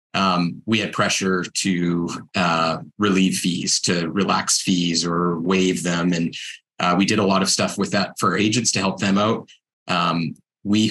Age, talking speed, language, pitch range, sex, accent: 30-49, 175 wpm, English, 95-110 Hz, male, American